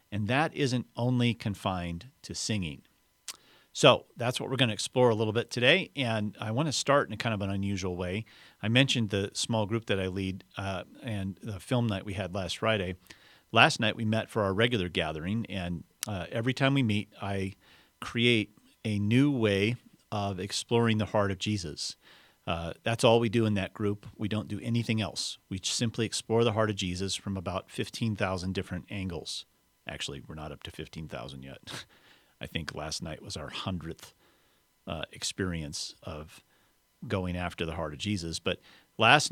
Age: 40-59